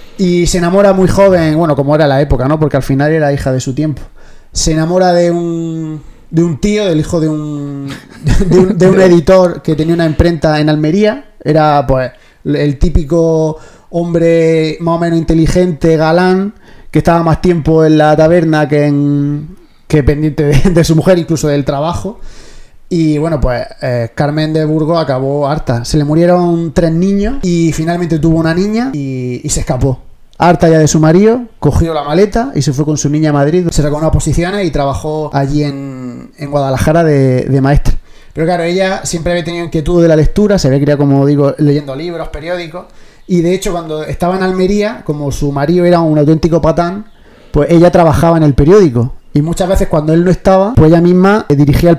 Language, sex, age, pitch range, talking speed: Spanish, male, 30-49, 150-180 Hz, 195 wpm